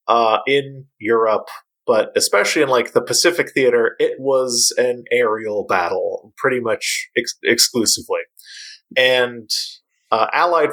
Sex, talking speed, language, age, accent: male, 125 wpm, English, 20-39, American